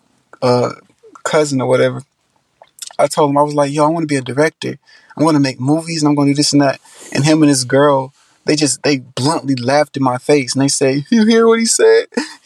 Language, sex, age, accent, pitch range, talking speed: English, male, 20-39, American, 135-160 Hz, 230 wpm